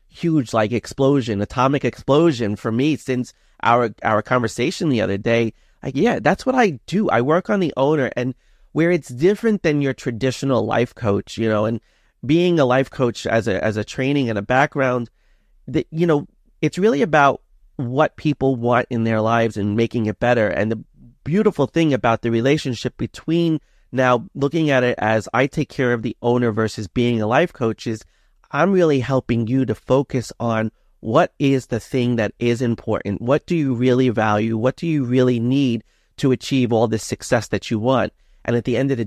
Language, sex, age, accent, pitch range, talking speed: English, male, 30-49, American, 115-150 Hz, 195 wpm